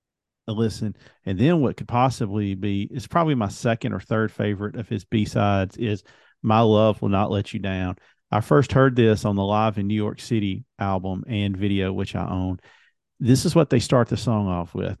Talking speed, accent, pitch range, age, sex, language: 210 wpm, American, 105-130 Hz, 40-59, male, English